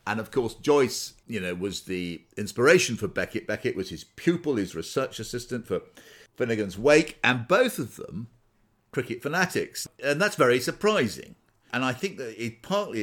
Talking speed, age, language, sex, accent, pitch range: 170 wpm, 50-69, English, male, British, 95-125 Hz